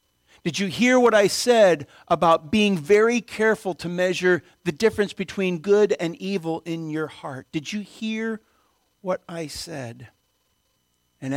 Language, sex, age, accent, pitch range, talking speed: English, male, 50-69, American, 135-210 Hz, 150 wpm